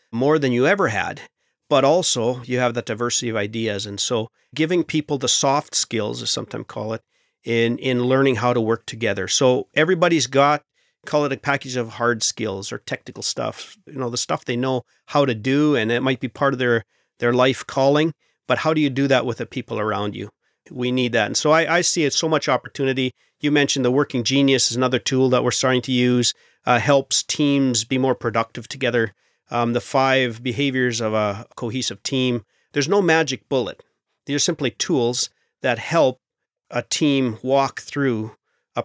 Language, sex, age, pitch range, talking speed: English, male, 40-59, 120-145 Hz, 200 wpm